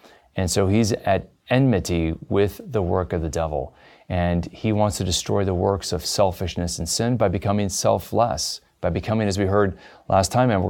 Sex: male